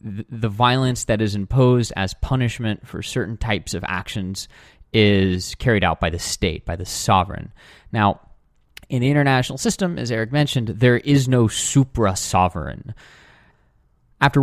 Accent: American